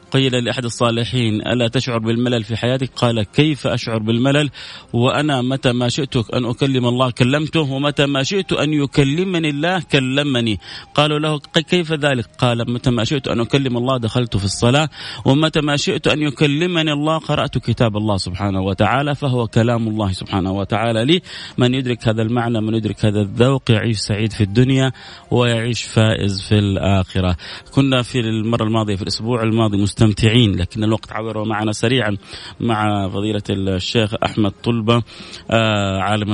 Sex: male